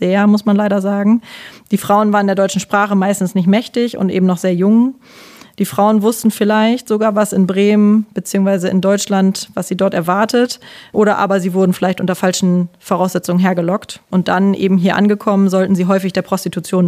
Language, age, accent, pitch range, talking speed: German, 30-49, German, 185-205 Hz, 190 wpm